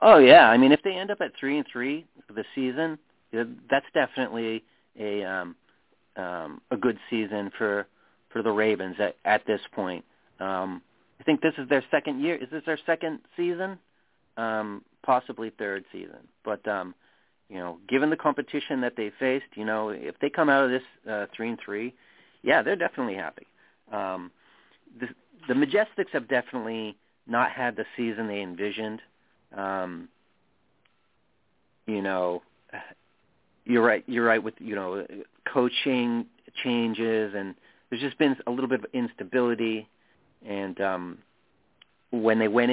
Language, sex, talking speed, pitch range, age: English, male, 160 wpm, 105-135 Hz, 40-59